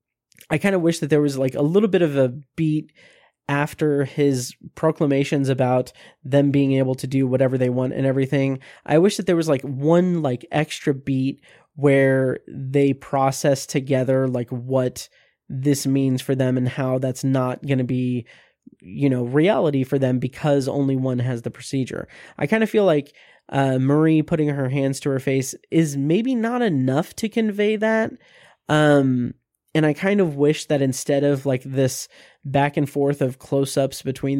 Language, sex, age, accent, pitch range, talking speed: English, male, 20-39, American, 130-155 Hz, 180 wpm